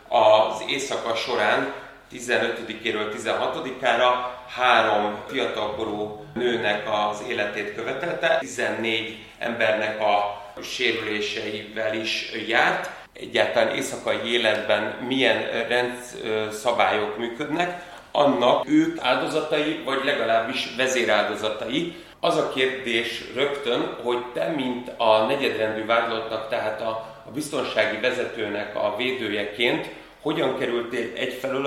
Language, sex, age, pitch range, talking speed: Hungarian, male, 30-49, 105-125 Hz, 90 wpm